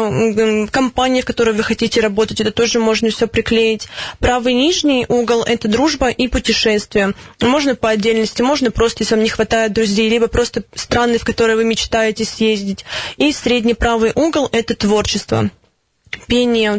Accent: native